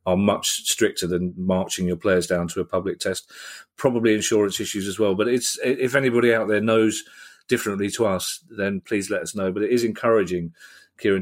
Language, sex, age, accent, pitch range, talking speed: English, male, 40-59, British, 95-125 Hz, 200 wpm